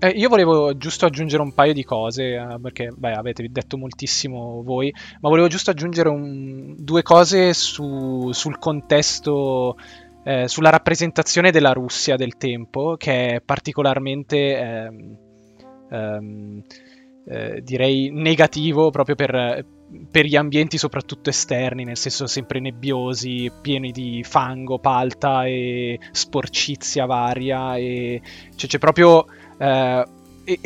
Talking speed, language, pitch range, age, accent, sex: 120 wpm, Italian, 130-155 Hz, 20-39, native, male